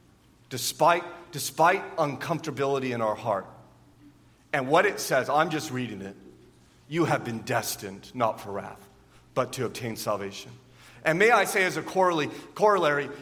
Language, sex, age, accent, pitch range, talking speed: English, male, 40-59, American, 140-185 Hz, 145 wpm